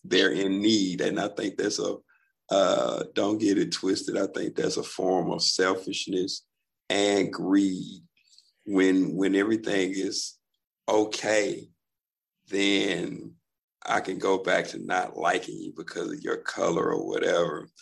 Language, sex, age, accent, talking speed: English, male, 50-69, American, 140 wpm